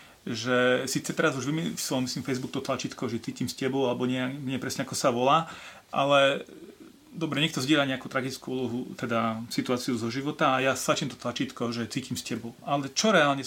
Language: Slovak